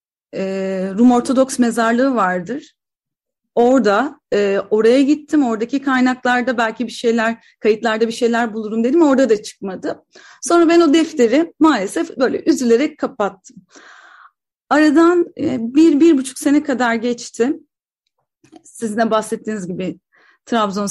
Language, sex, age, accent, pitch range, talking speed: Turkish, female, 30-49, native, 230-295 Hz, 120 wpm